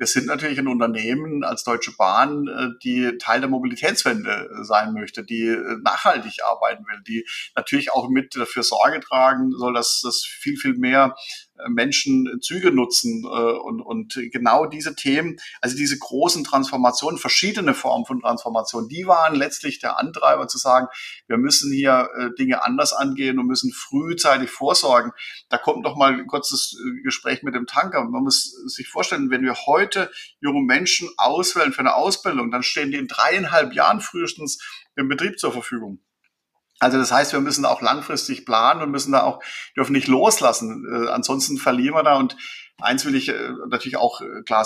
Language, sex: German, male